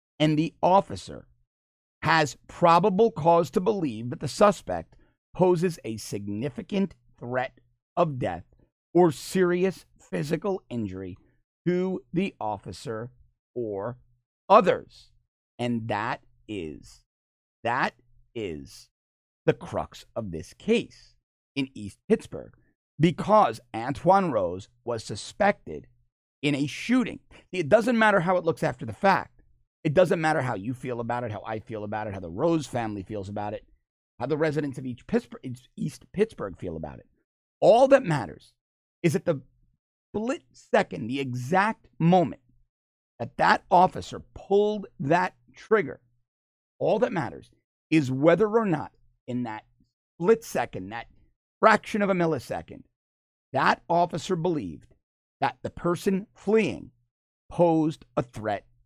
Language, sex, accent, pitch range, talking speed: English, male, American, 110-180 Hz, 130 wpm